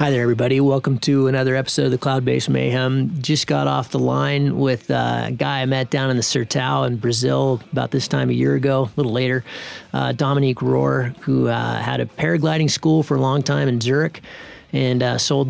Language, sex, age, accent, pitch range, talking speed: English, male, 30-49, American, 120-140 Hz, 210 wpm